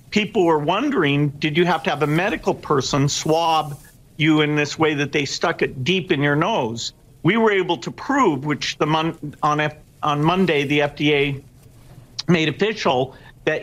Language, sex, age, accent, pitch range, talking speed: English, male, 50-69, American, 140-170 Hz, 180 wpm